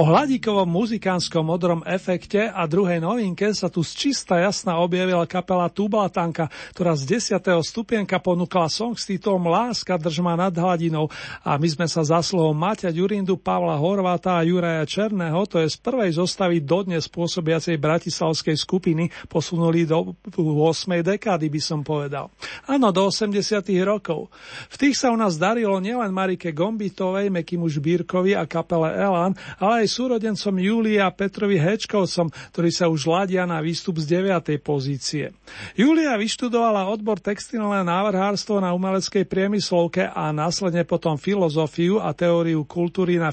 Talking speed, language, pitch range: 140 wpm, Slovak, 165-195 Hz